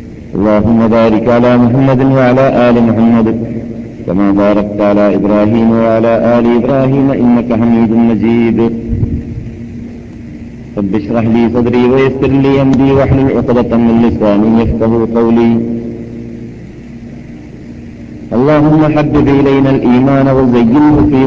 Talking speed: 100 wpm